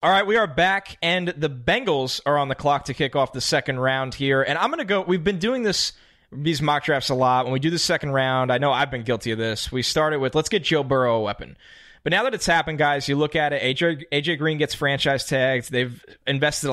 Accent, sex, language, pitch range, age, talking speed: American, male, English, 130-160 Hz, 20-39, 260 wpm